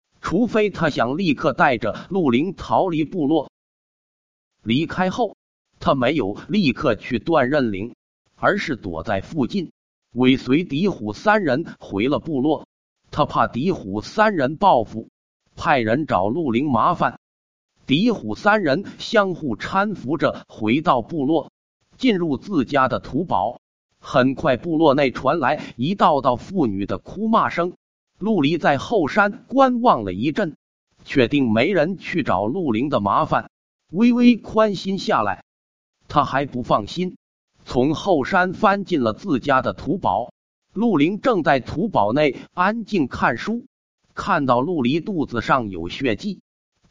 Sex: male